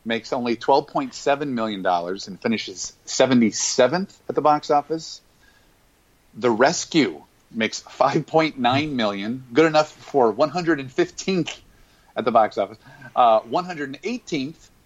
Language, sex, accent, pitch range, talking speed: English, male, American, 110-150 Hz, 145 wpm